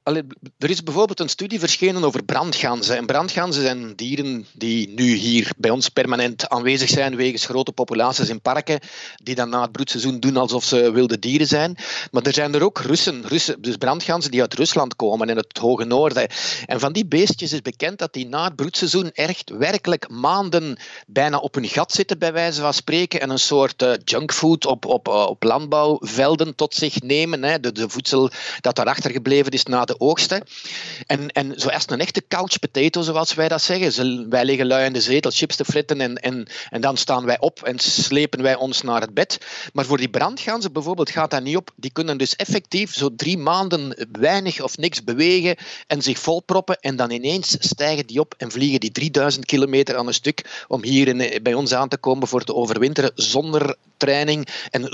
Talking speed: 200 wpm